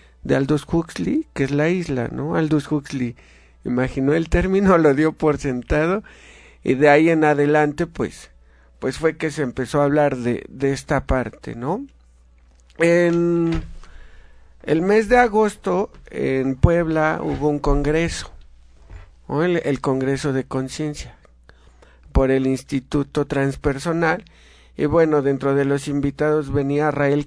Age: 50-69